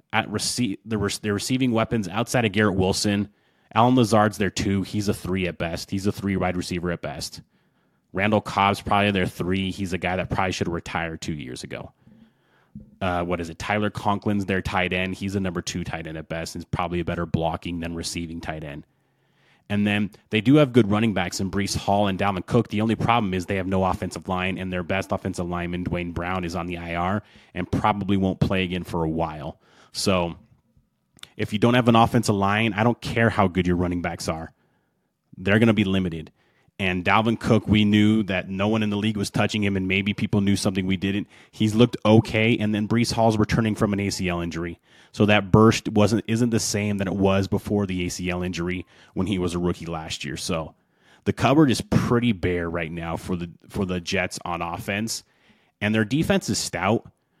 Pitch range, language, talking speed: 90-110 Hz, English, 215 wpm